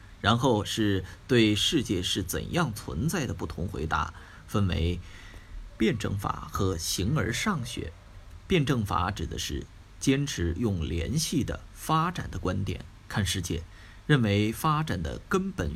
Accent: native